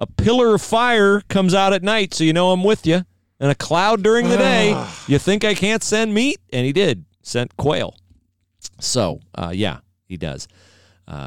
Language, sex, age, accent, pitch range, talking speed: English, male, 40-59, American, 95-125 Hz, 195 wpm